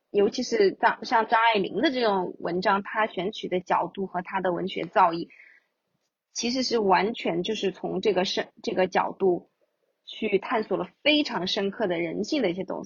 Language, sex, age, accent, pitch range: Chinese, female, 20-39, native, 185-240 Hz